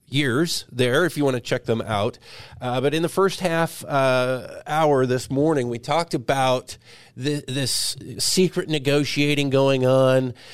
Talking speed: 160 wpm